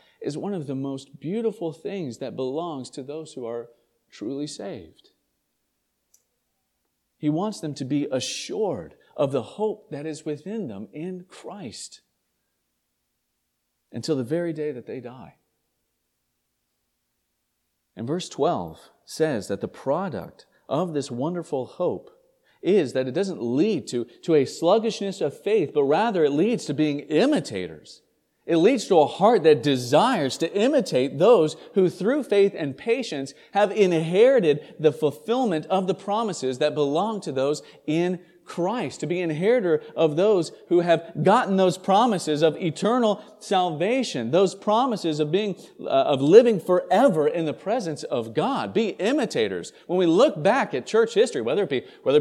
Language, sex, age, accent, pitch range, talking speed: English, male, 40-59, American, 145-220 Hz, 155 wpm